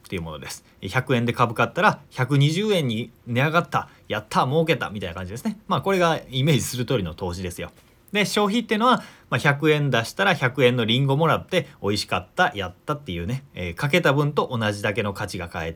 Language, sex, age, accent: Japanese, male, 30-49, native